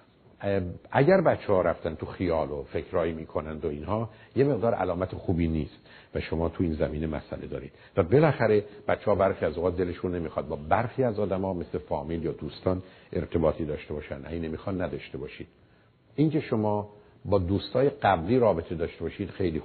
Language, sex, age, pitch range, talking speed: Persian, male, 50-69, 85-115 Hz, 170 wpm